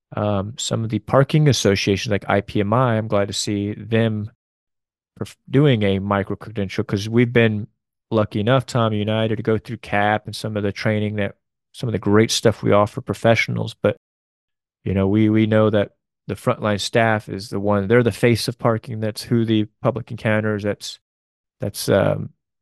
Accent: American